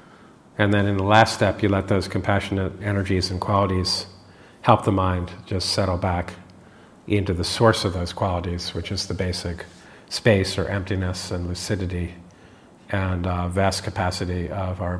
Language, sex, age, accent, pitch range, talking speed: English, male, 50-69, American, 90-110 Hz, 160 wpm